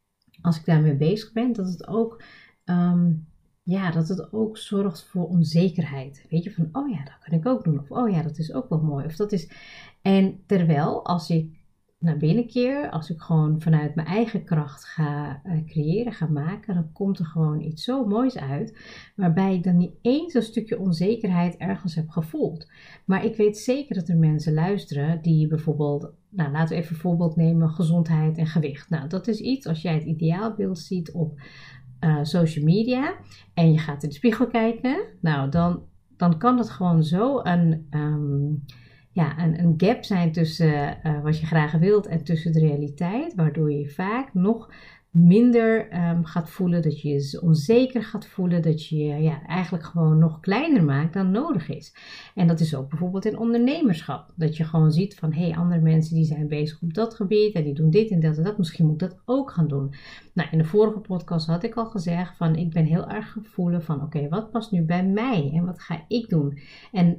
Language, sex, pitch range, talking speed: Dutch, female, 155-200 Hz, 205 wpm